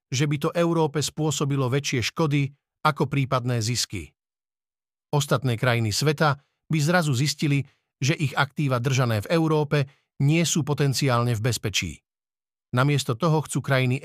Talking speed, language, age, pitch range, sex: 130 wpm, Slovak, 50-69, 125-155 Hz, male